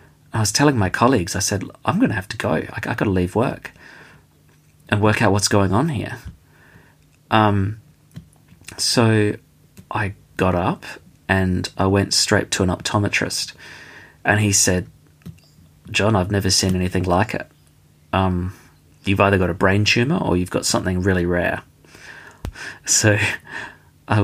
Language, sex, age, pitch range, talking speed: English, male, 30-49, 90-105 Hz, 155 wpm